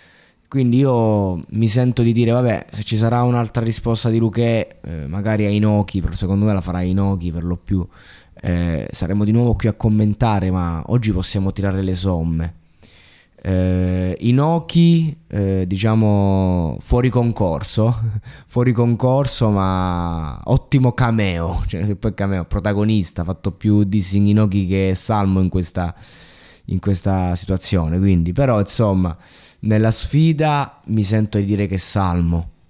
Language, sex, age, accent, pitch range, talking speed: Italian, male, 20-39, native, 95-115 Hz, 145 wpm